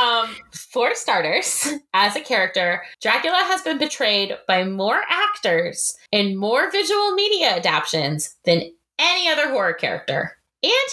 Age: 20-39